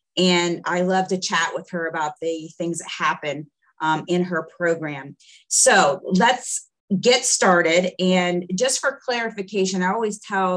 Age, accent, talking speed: 30-49, American, 155 wpm